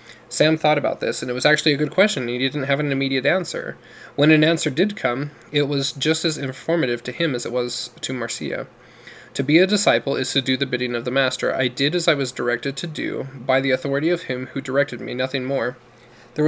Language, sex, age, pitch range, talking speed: English, male, 20-39, 125-150 Hz, 240 wpm